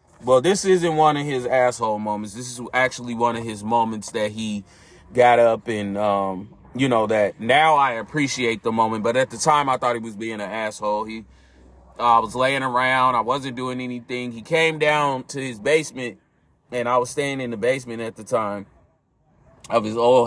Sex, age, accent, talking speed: male, 30-49, American, 205 wpm